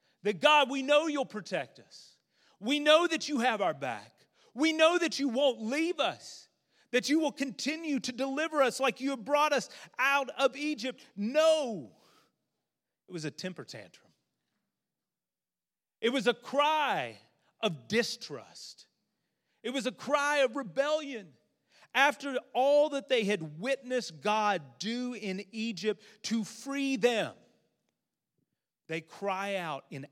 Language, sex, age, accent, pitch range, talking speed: English, male, 40-59, American, 210-290 Hz, 140 wpm